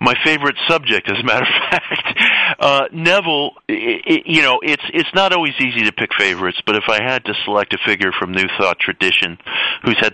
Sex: male